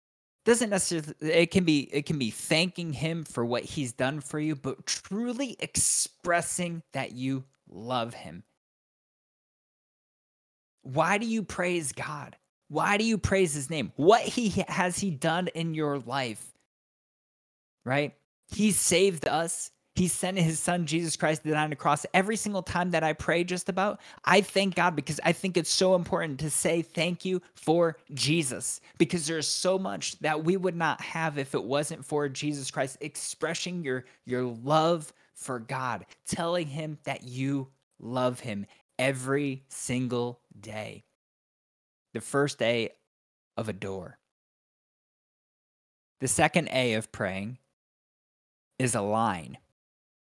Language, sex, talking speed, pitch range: English, male, 150 wpm, 130-175 Hz